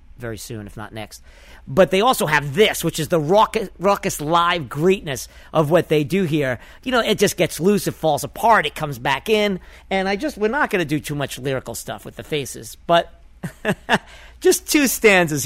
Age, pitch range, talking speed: 50-69, 145-200 Hz, 210 wpm